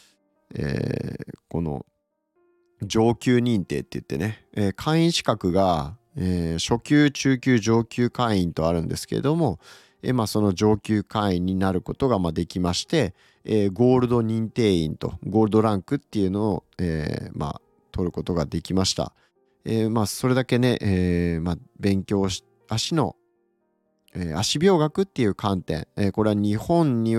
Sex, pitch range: male, 95-125 Hz